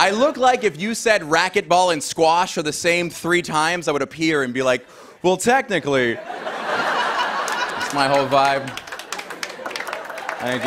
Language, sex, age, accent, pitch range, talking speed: English, male, 20-39, American, 145-175 Hz, 150 wpm